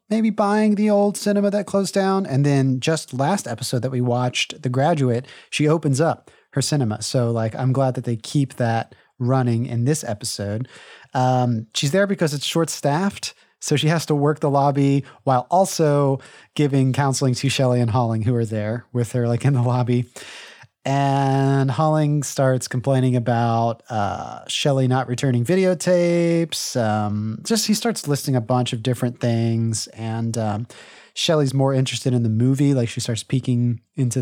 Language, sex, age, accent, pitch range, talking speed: English, male, 30-49, American, 120-150 Hz, 170 wpm